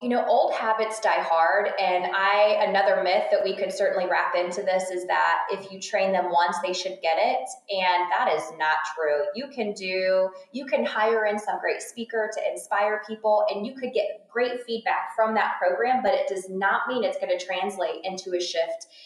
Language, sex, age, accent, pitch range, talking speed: English, female, 20-39, American, 180-230 Hz, 210 wpm